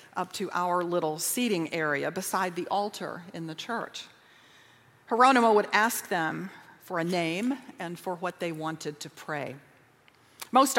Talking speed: 150 wpm